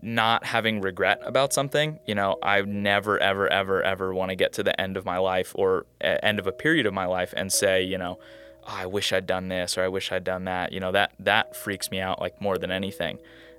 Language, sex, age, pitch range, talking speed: English, male, 20-39, 95-110 Hz, 250 wpm